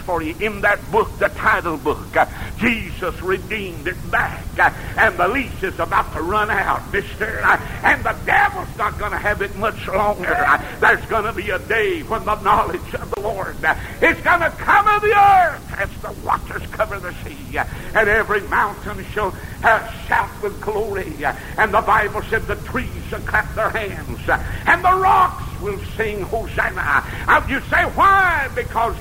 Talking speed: 170 wpm